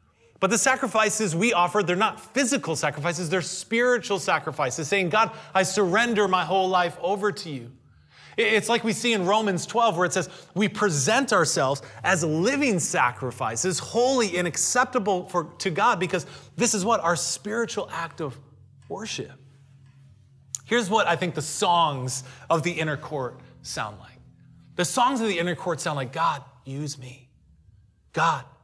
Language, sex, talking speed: English, male, 160 wpm